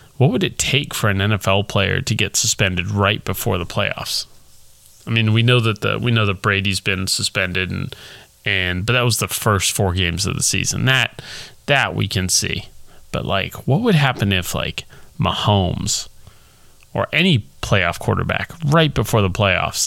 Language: English